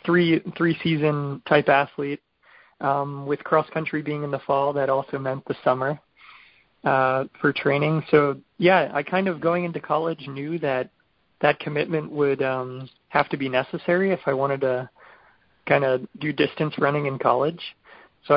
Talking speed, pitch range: 165 wpm, 140-155 Hz